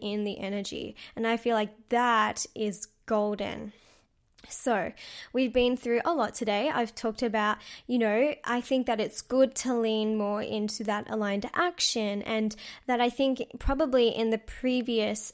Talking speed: 165 wpm